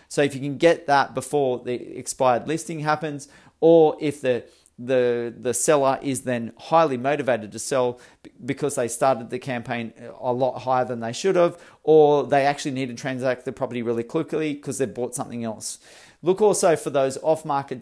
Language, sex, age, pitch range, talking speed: English, male, 40-59, 130-160 Hz, 185 wpm